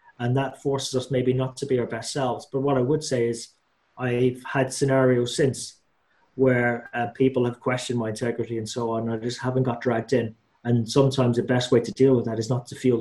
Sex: male